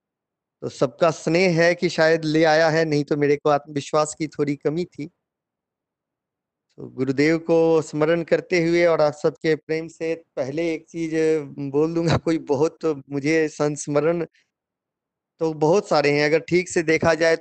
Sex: male